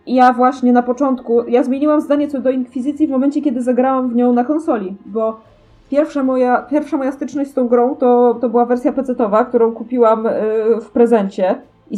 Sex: female